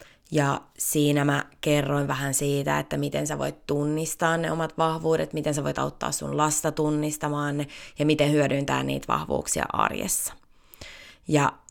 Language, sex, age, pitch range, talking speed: Finnish, female, 20-39, 150-185 Hz, 150 wpm